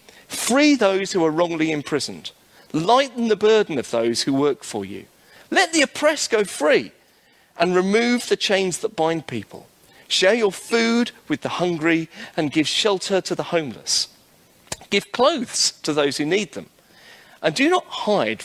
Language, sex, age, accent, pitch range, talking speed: English, male, 40-59, British, 150-210 Hz, 165 wpm